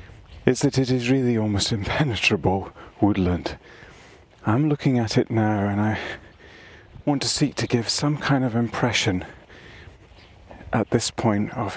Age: 30-49